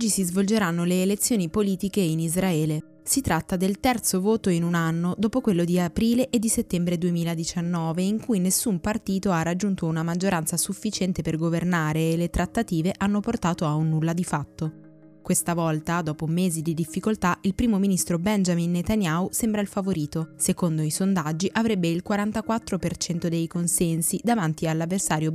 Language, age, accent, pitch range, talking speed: Italian, 20-39, native, 160-195 Hz, 160 wpm